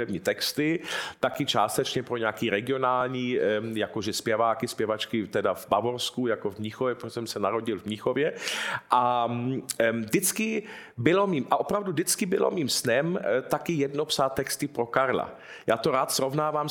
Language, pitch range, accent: Czech, 120-160 Hz, native